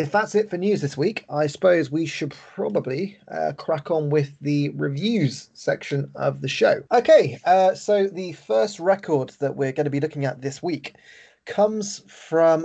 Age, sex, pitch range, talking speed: 20-39, male, 140-180 Hz, 185 wpm